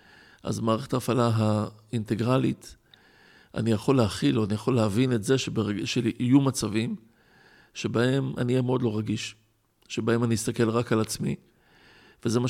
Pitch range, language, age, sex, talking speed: 110-125 Hz, Hebrew, 50-69, male, 145 wpm